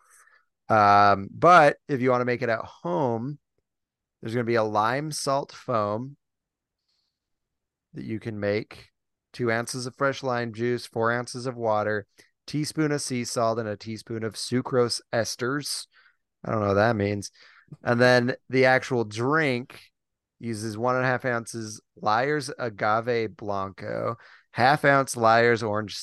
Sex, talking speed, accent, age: male, 150 wpm, American, 30-49